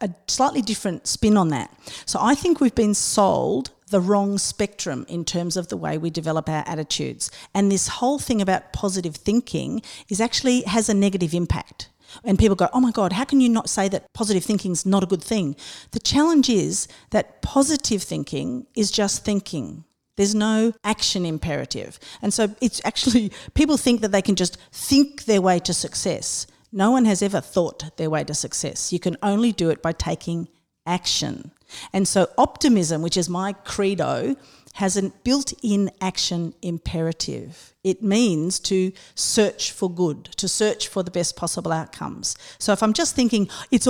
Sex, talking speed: female, 180 wpm